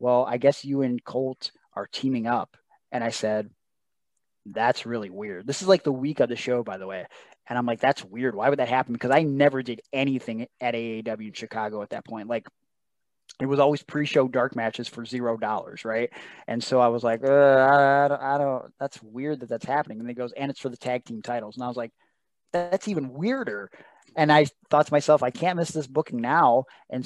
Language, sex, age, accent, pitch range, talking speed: English, male, 20-39, American, 120-140 Hz, 225 wpm